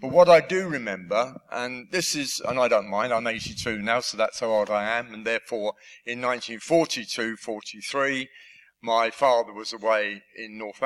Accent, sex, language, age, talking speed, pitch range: British, male, English, 50-69, 170 wpm, 110-135 Hz